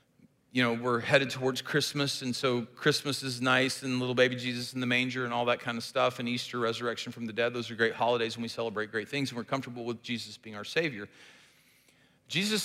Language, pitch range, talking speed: English, 130-175 Hz, 230 wpm